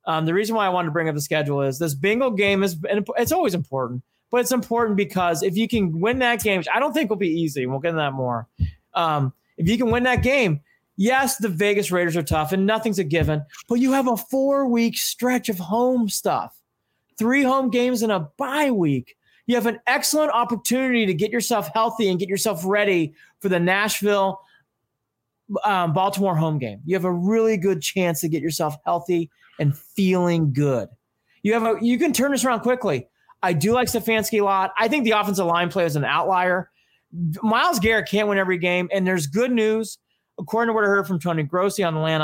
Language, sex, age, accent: English, male, 30-49, American